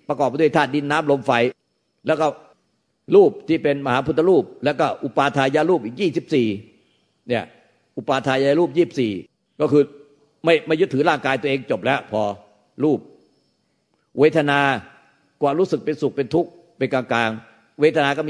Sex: male